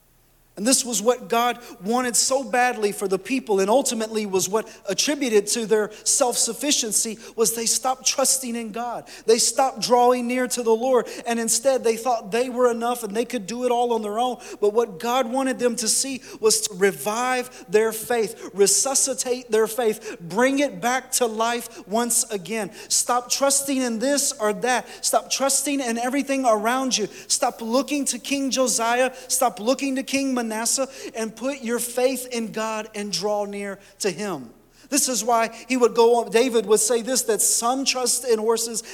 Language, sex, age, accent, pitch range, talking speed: English, male, 30-49, American, 220-255 Hz, 185 wpm